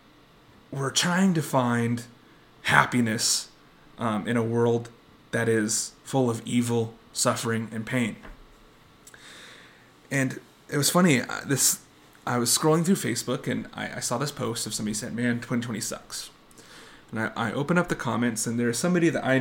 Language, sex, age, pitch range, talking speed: English, male, 30-49, 115-150 Hz, 160 wpm